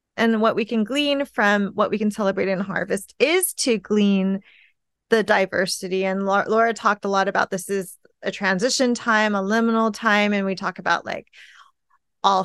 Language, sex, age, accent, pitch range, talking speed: English, female, 30-49, American, 195-230 Hz, 180 wpm